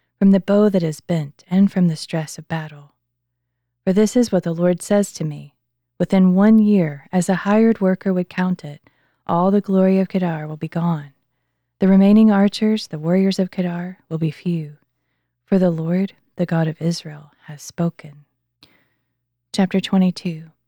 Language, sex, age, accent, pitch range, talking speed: English, female, 30-49, American, 155-195 Hz, 175 wpm